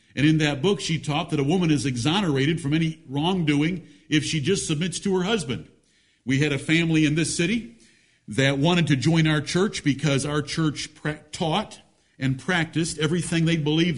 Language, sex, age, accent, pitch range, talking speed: English, male, 50-69, American, 145-185 Hz, 185 wpm